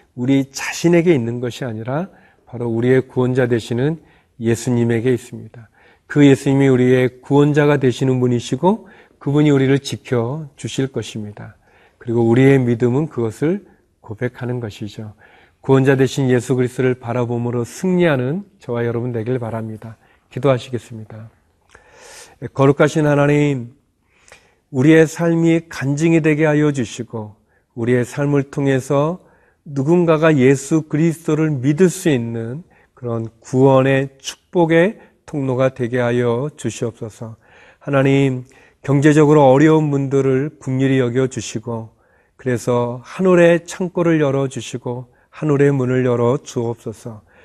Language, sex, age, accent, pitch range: Korean, male, 40-59, native, 120-150 Hz